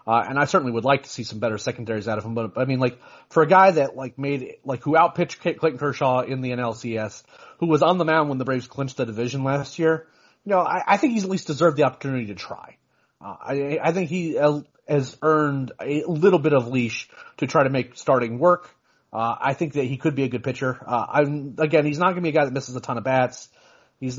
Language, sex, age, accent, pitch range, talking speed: English, male, 30-49, American, 120-150 Hz, 260 wpm